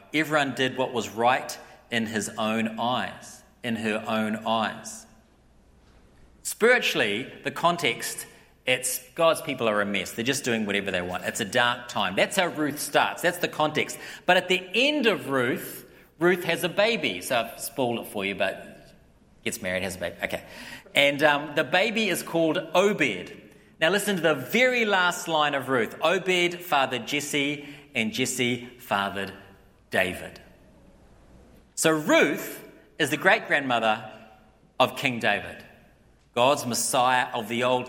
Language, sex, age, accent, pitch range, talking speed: English, male, 40-59, Australian, 120-180 Hz, 155 wpm